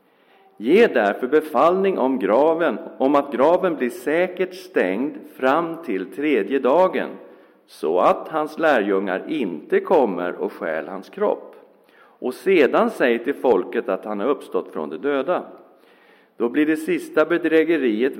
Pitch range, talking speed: 125-185 Hz, 140 wpm